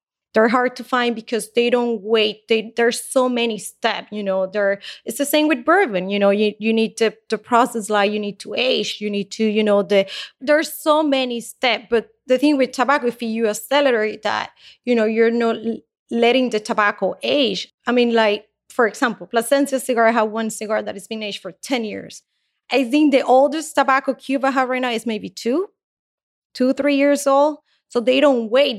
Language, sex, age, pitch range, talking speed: English, female, 20-39, 215-255 Hz, 205 wpm